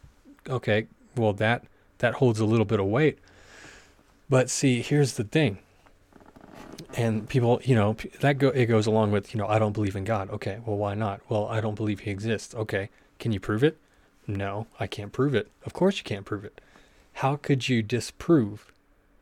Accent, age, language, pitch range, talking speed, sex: American, 30-49, English, 105-130 Hz, 195 wpm, male